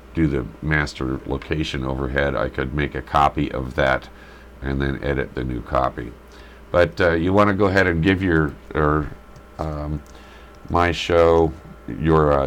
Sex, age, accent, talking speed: male, 50-69, American, 165 wpm